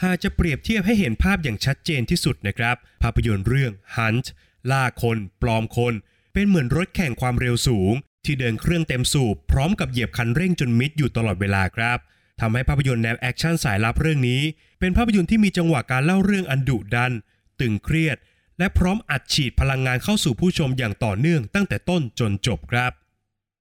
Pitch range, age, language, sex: 115-160 Hz, 20-39, Thai, male